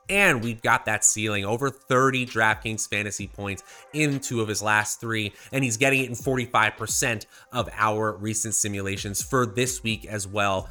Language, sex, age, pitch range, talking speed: English, male, 20-39, 100-135 Hz, 175 wpm